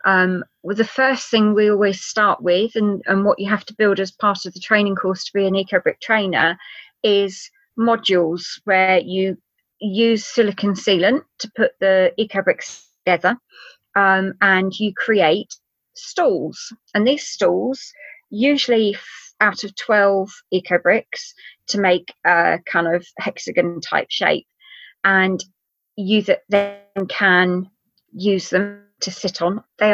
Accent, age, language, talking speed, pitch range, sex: British, 30-49, English, 145 wpm, 190-235 Hz, female